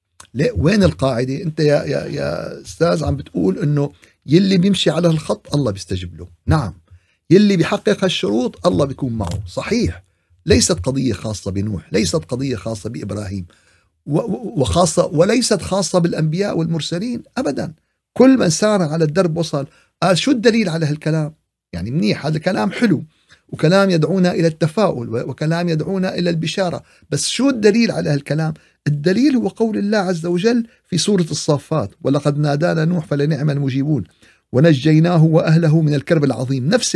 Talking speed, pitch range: 140 wpm, 135-185 Hz